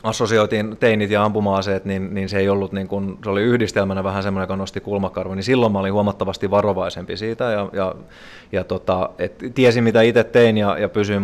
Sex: male